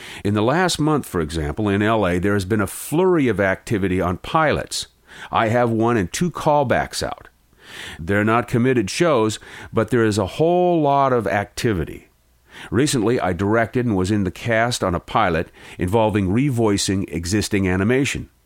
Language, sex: English, male